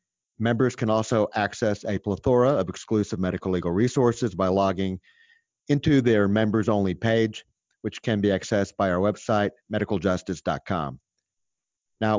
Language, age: English, 50-69